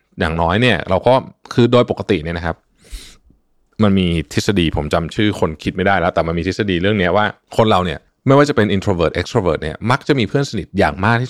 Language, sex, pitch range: Thai, male, 85-115 Hz